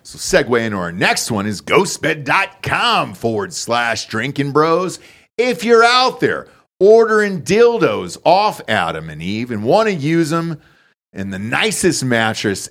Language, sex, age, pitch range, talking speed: English, male, 40-59, 120-170 Hz, 145 wpm